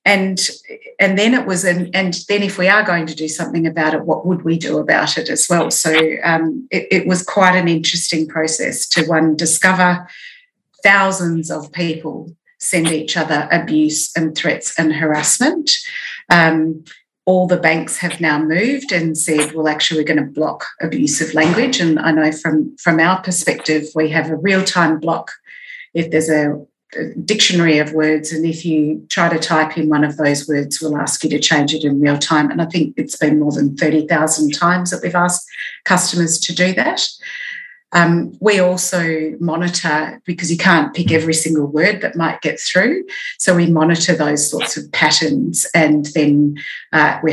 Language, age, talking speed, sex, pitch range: English, 40-59, 185 wpm, female, 155-180 Hz